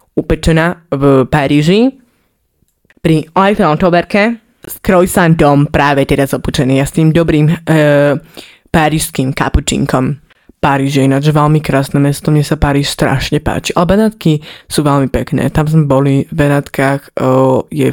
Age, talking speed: 20-39, 130 wpm